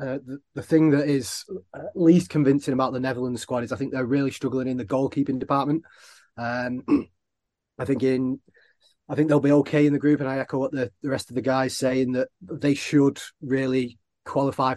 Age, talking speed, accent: 30-49, 205 wpm, British